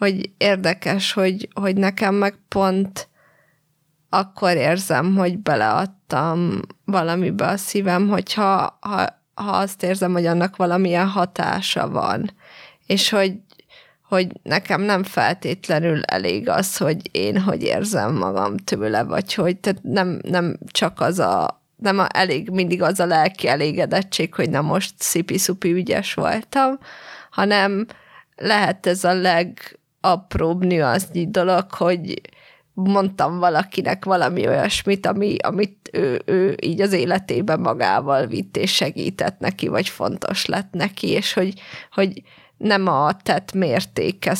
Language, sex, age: Hungarian, female, 20-39